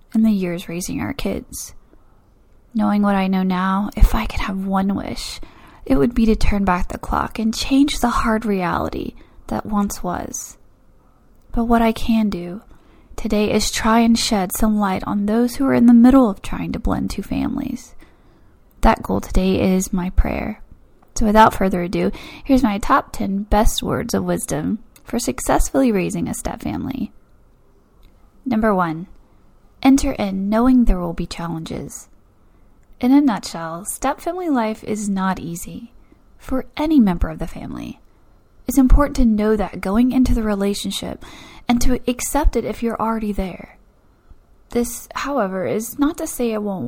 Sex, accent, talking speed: female, American, 170 wpm